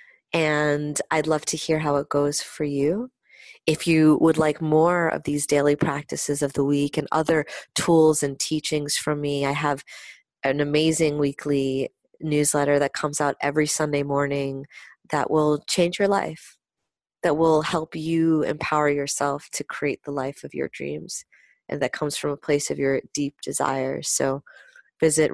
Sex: female